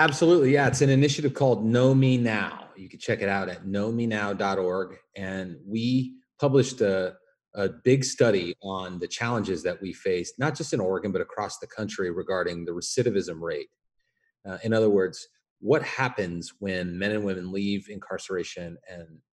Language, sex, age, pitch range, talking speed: English, male, 30-49, 95-135 Hz, 170 wpm